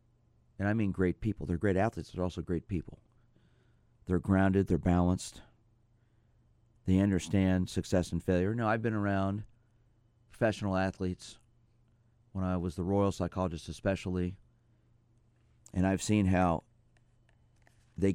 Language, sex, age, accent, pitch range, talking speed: English, male, 40-59, American, 95-115 Hz, 130 wpm